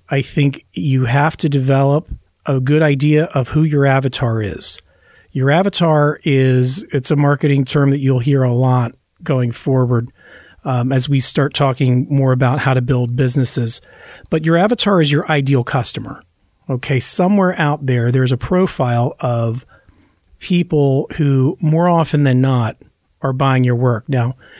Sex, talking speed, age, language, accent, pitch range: male, 160 wpm, 40-59, English, American, 130-150 Hz